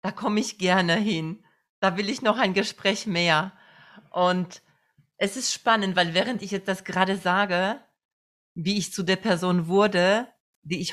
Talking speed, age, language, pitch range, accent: 170 wpm, 40-59, German, 170-195 Hz, German